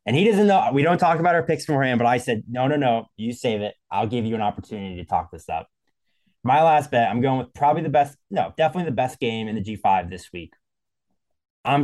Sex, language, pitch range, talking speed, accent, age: male, English, 105-150 Hz, 250 wpm, American, 20-39